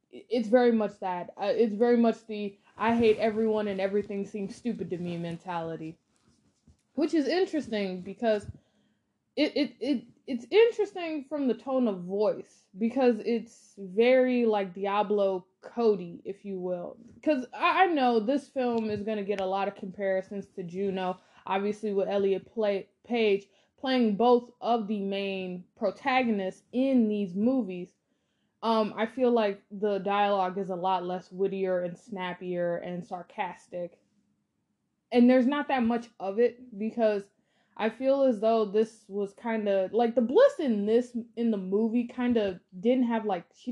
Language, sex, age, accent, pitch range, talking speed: English, female, 20-39, American, 195-240 Hz, 160 wpm